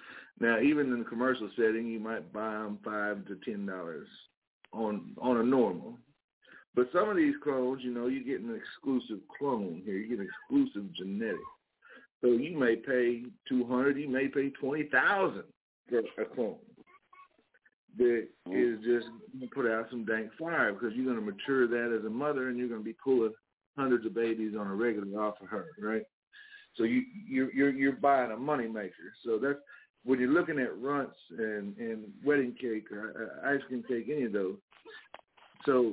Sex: male